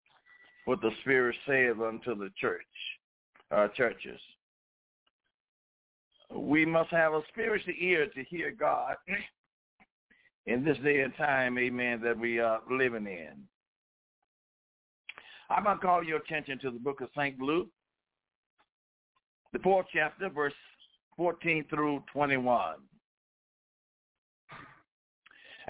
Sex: male